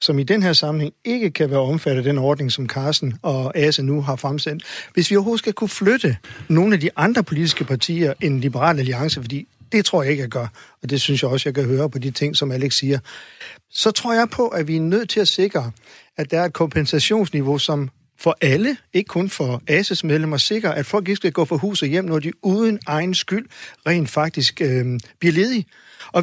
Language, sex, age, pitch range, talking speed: Danish, male, 60-79, 140-195 Hz, 230 wpm